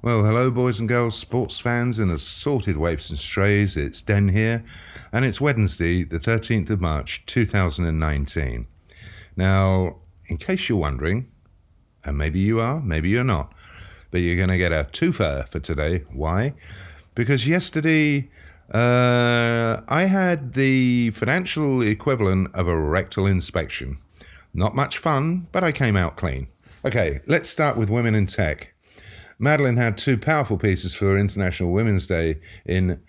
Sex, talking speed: male, 150 wpm